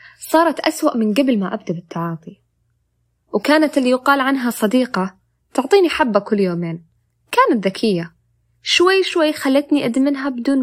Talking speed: 130 wpm